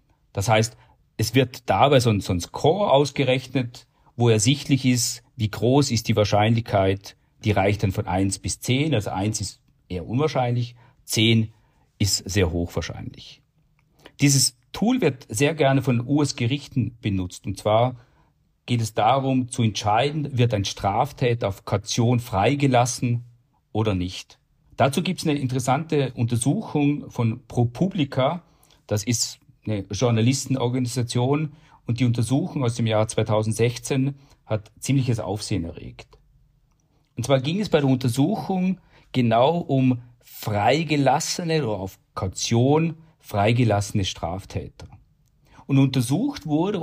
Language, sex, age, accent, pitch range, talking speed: German, male, 50-69, German, 110-145 Hz, 125 wpm